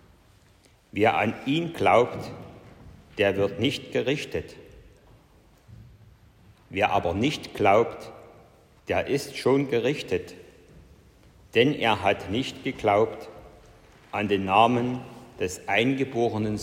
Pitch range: 100-130 Hz